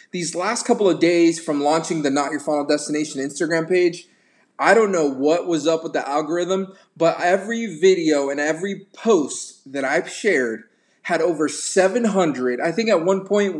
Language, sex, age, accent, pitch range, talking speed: English, male, 20-39, American, 150-190 Hz, 175 wpm